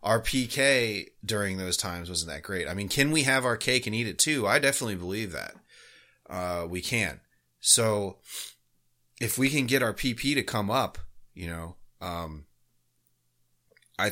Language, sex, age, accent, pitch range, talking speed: English, male, 30-49, American, 85-110 Hz, 170 wpm